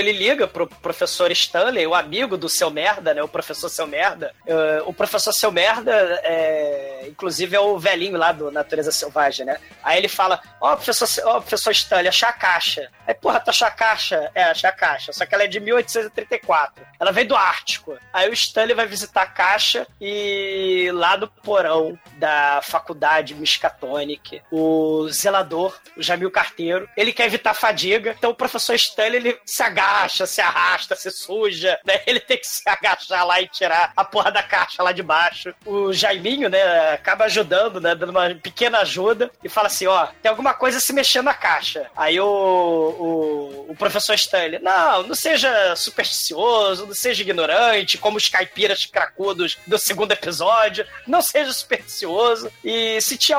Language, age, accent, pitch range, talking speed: Portuguese, 20-39, Brazilian, 185-240 Hz, 180 wpm